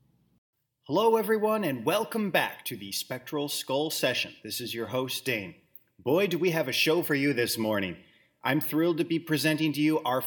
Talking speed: 195 wpm